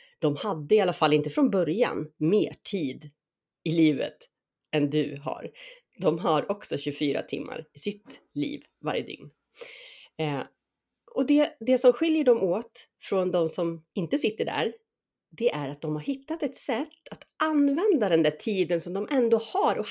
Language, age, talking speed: Swedish, 30-49, 170 wpm